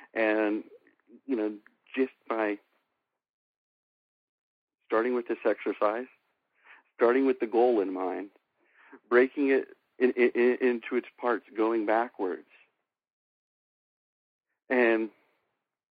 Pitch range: 110-135 Hz